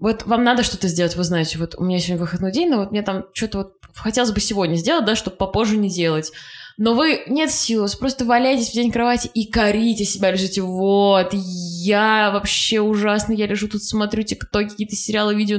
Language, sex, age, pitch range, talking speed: Russian, female, 20-39, 185-220 Hz, 210 wpm